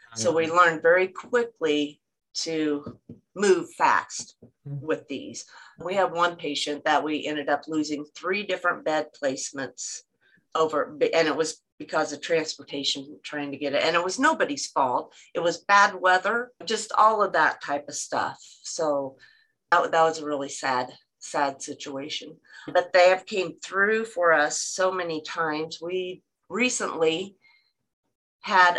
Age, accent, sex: 40-59, American, female